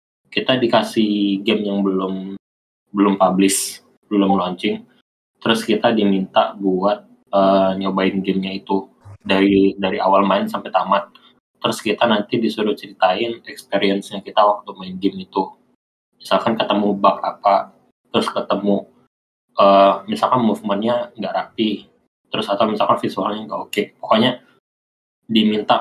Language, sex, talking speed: Indonesian, male, 125 wpm